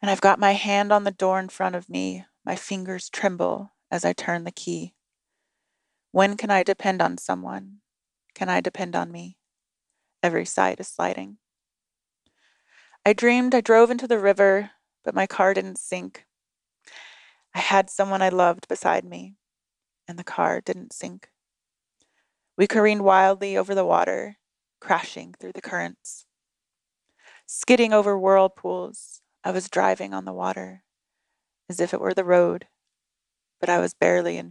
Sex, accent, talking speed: female, American, 155 wpm